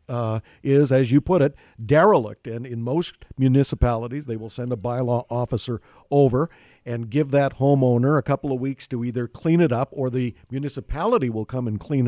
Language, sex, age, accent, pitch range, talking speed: English, male, 50-69, American, 120-165 Hz, 190 wpm